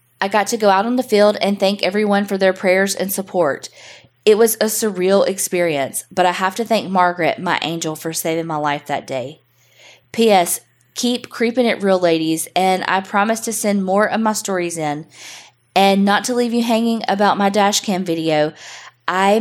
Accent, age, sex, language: American, 20-39, female, English